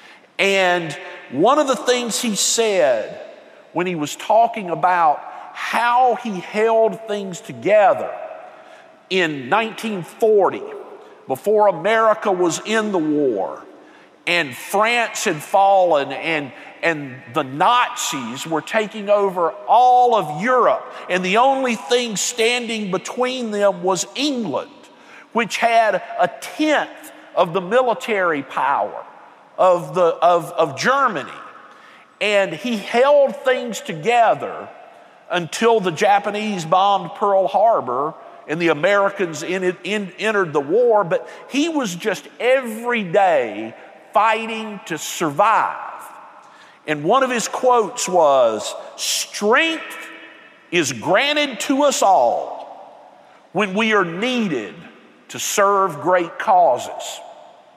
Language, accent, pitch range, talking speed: English, American, 180-245 Hz, 110 wpm